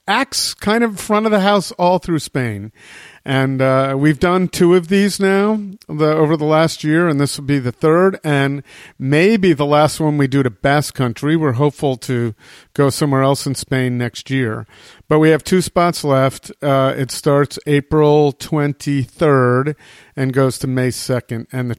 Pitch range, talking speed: 125-155 Hz, 180 wpm